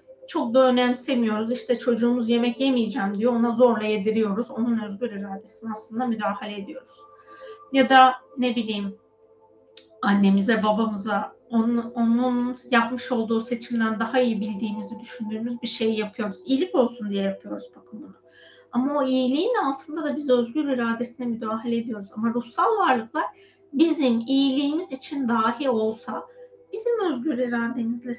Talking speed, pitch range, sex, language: 130 wpm, 220-280 Hz, female, Turkish